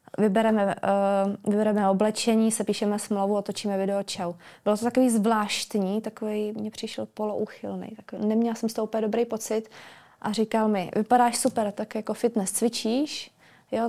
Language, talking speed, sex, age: Czech, 145 wpm, female, 20-39